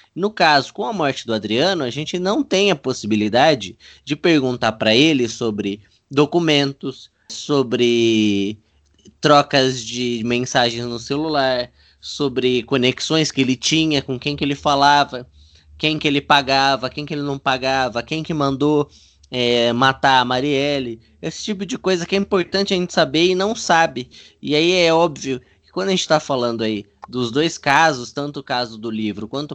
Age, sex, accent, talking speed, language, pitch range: 20-39, male, Brazilian, 170 wpm, Portuguese, 115-155 Hz